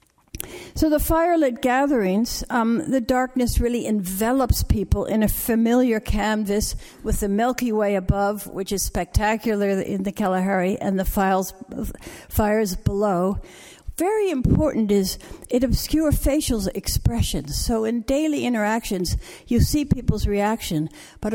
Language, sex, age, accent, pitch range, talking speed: English, female, 60-79, American, 200-250 Hz, 125 wpm